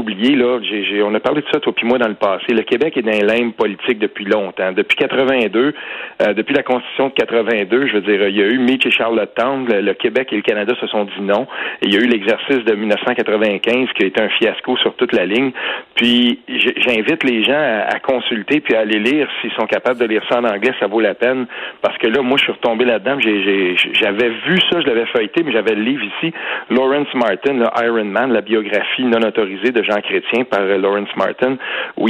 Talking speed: 245 wpm